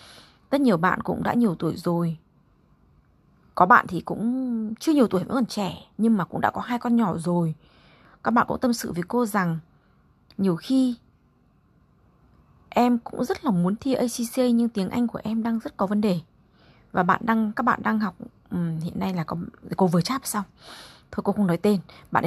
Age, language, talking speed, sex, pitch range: 20-39, Vietnamese, 205 wpm, female, 180-230 Hz